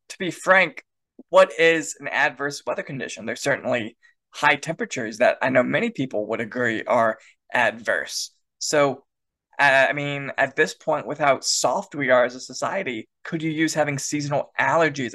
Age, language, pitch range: 20-39, English, 125-160 Hz